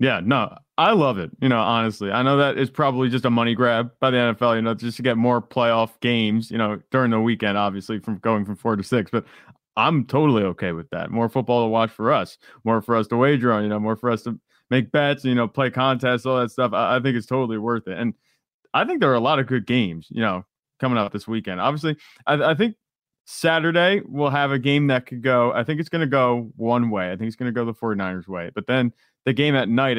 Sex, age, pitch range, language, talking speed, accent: male, 30-49, 110-135 Hz, English, 260 wpm, American